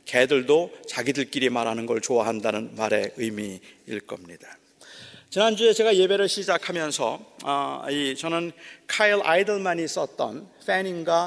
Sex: male